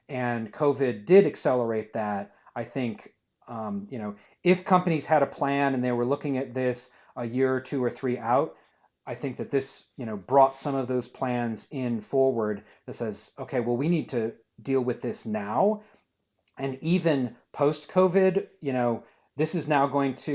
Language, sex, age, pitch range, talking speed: English, male, 40-59, 120-140 Hz, 185 wpm